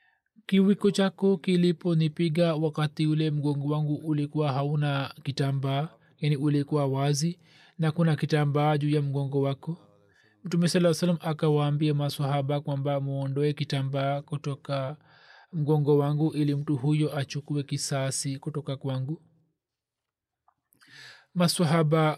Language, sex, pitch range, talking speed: Swahili, male, 140-155 Hz, 110 wpm